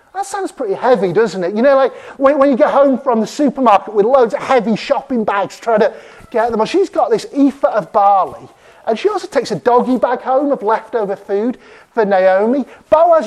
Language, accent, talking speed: English, British, 215 wpm